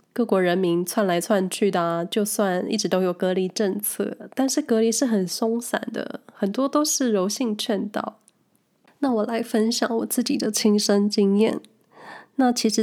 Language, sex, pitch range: Chinese, female, 195-235 Hz